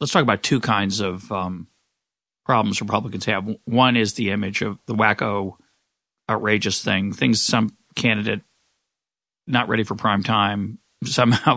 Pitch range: 105-120 Hz